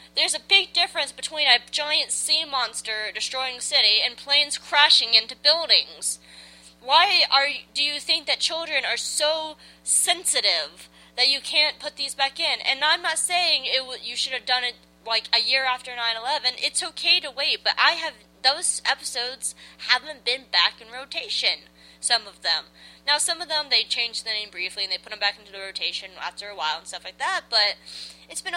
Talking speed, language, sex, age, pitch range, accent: 195 wpm, English, female, 20-39, 195-300 Hz, American